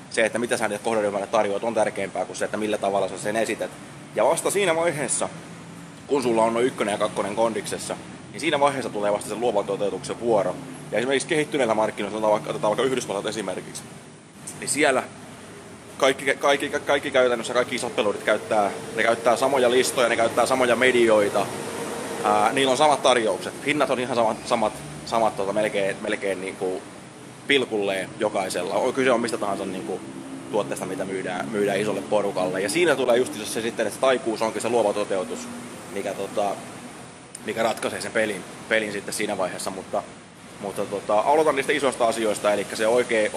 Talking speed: 175 wpm